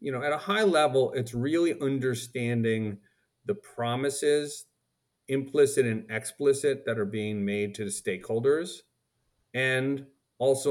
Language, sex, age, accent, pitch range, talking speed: English, male, 40-59, American, 110-140 Hz, 130 wpm